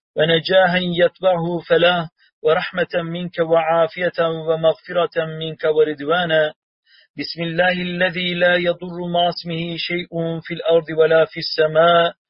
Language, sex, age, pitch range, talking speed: Turkish, male, 40-59, 160-180 Hz, 110 wpm